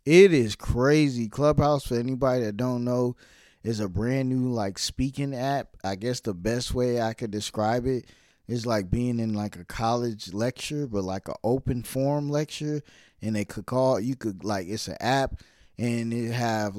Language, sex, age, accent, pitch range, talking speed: English, male, 20-39, American, 110-135 Hz, 185 wpm